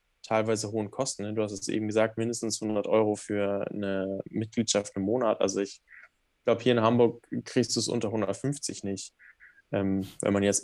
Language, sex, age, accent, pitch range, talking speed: German, male, 10-29, German, 100-110 Hz, 180 wpm